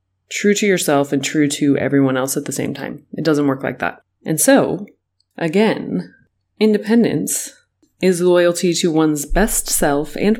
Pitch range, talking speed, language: 140-180 Hz, 160 wpm, English